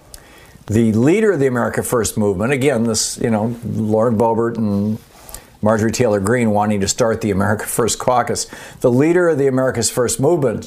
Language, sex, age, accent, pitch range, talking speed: English, male, 50-69, American, 110-140 Hz, 175 wpm